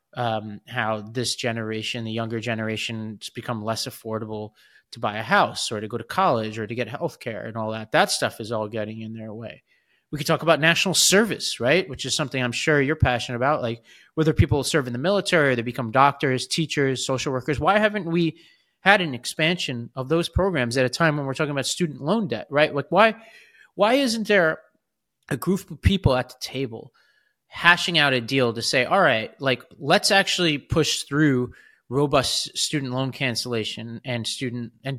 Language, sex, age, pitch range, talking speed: English, male, 30-49, 120-170 Hz, 200 wpm